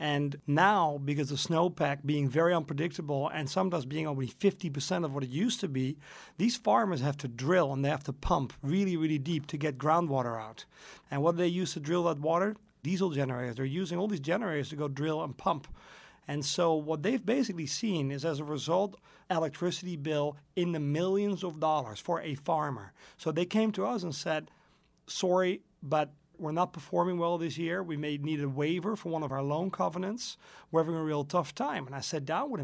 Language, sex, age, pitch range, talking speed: English, male, 40-59, 145-190 Hz, 210 wpm